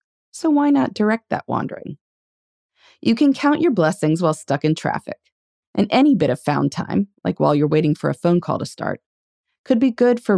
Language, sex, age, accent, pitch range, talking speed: English, female, 30-49, American, 145-240 Hz, 200 wpm